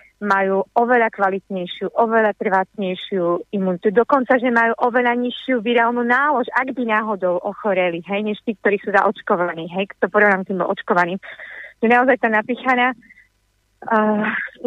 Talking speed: 135 wpm